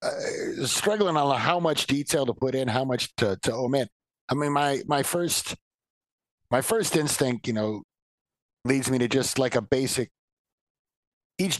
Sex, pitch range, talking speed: male, 105-135 Hz, 170 wpm